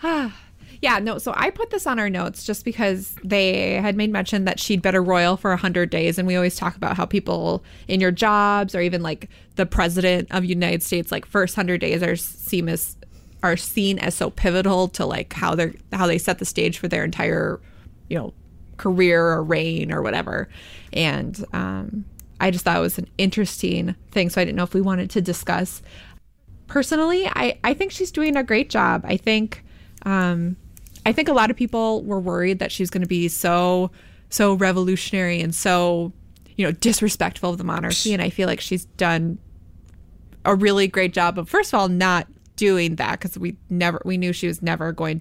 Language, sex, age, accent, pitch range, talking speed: English, female, 20-39, American, 175-200 Hz, 205 wpm